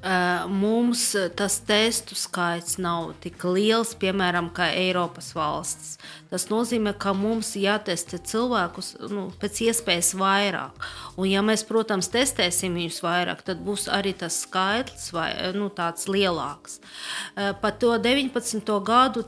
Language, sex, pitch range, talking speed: English, female, 185-230 Hz, 120 wpm